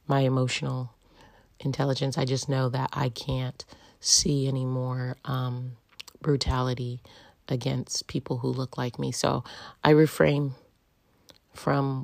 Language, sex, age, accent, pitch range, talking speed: English, female, 40-59, American, 125-155 Hz, 120 wpm